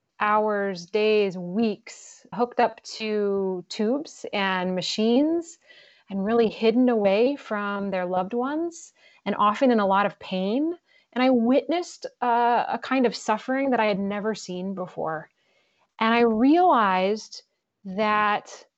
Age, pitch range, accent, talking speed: 30-49, 200-255 Hz, American, 135 wpm